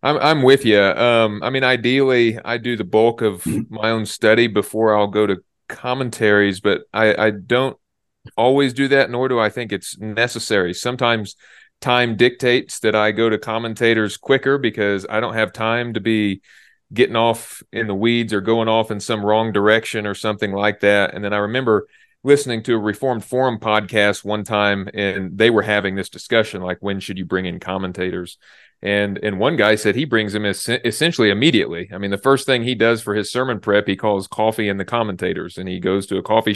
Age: 30-49